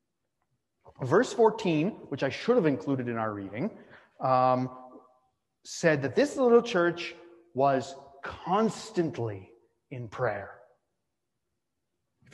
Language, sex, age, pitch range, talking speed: English, male, 30-49, 135-225 Hz, 100 wpm